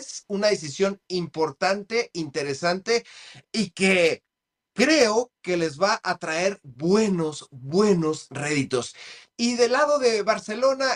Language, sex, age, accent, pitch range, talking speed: Spanish, male, 30-49, Mexican, 175-240 Hz, 115 wpm